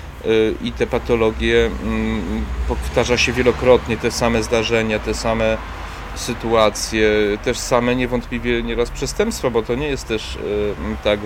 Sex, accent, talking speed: male, native, 125 wpm